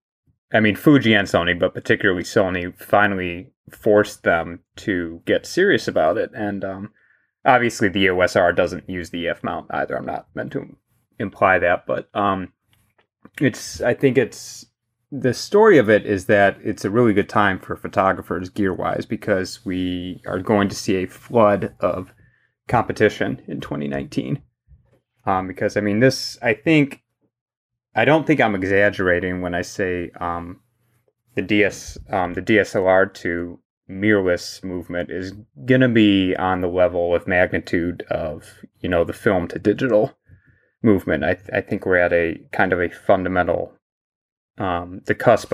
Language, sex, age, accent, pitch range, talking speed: English, male, 30-49, American, 90-110 Hz, 155 wpm